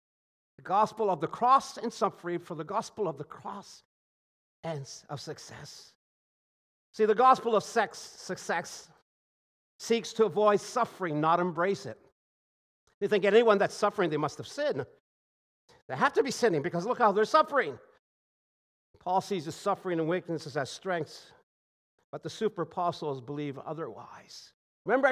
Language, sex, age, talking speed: English, male, 50-69, 150 wpm